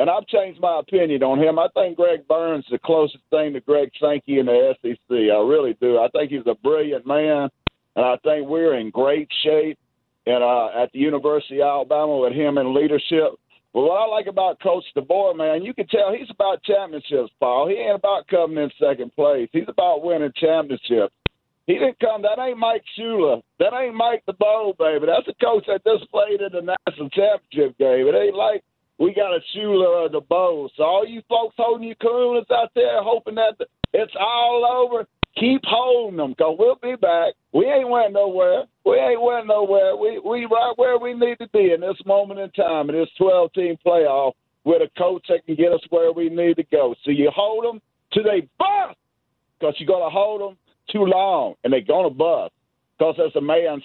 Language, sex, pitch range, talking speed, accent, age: English, male, 155-245 Hz, 210 wpm, American, 50-69